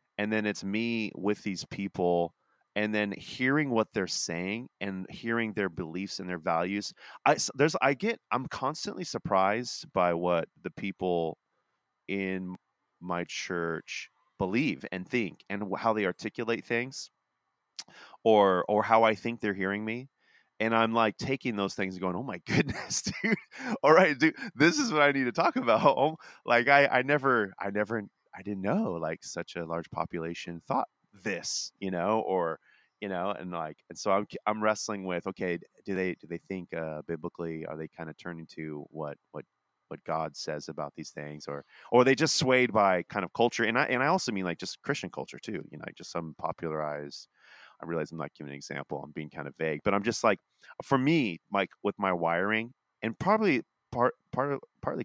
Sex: male